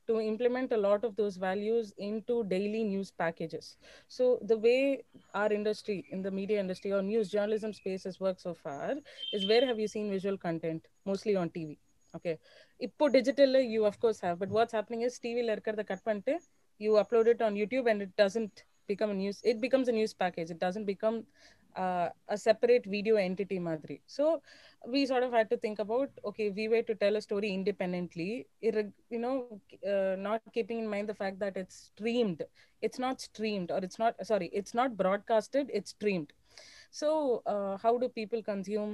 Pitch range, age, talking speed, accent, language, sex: 195-235 Hz, 30-49, 195 wpm, native, Tamil, female